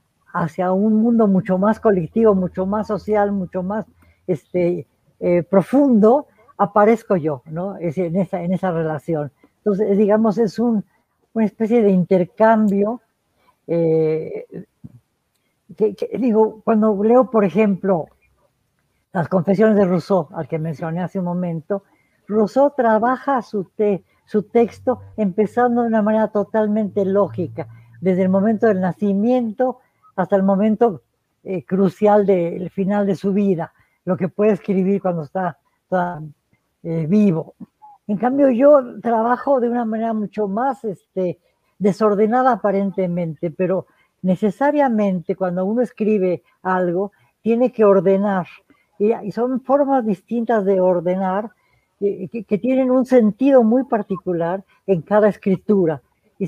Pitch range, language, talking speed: 185-220 Hz, Spanish, 135 wpm